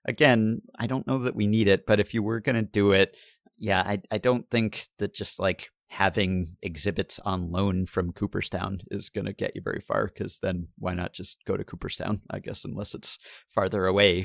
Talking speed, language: 215 wpm, English